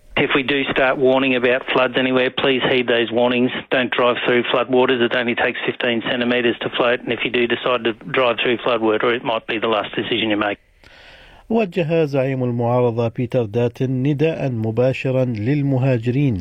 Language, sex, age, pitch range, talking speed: Arabic, male, 50-69, 115-135 Hz, 175 wpm